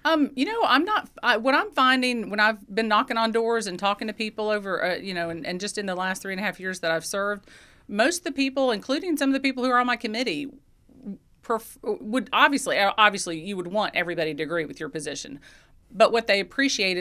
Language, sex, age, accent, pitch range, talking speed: English, female, 40-59, American, 175-220 Hz, 235 wpm